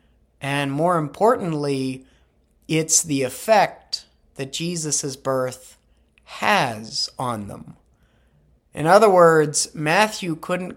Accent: American